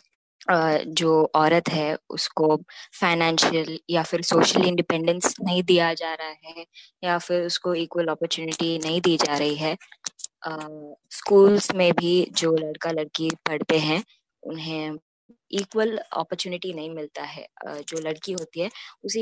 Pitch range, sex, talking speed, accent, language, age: 160-190 Hz, female, 145 wpm, native, Hindi, 20-39